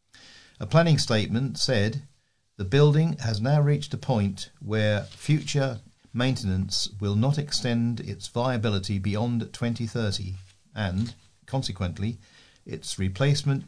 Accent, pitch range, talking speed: British, 100-130 Hz, 110 wpm